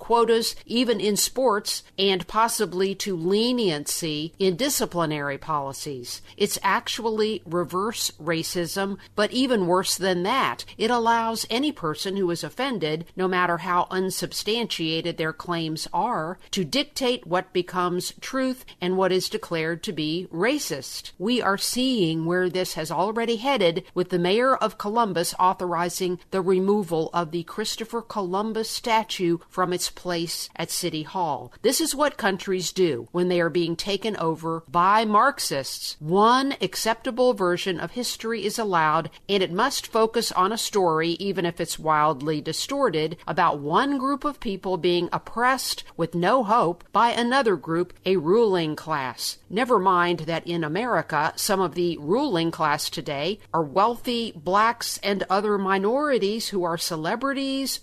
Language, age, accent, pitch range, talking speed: English, 50-69, American, 170-225 Hz, 145 wpm